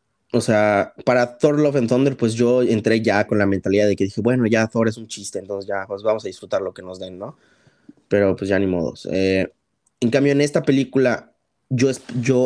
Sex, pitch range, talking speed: male, 105-130 Hz, 225 wpm